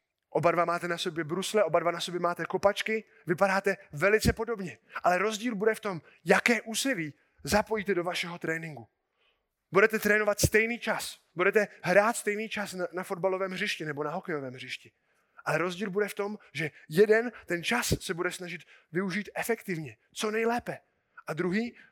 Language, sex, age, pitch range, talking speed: Czech, male, 20-39, 160-205 Hz, 165 wpm